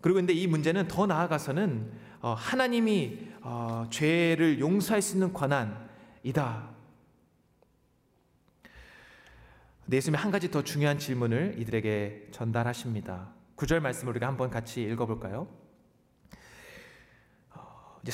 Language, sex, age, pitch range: Korean, male, 30-49, 120-190 Hz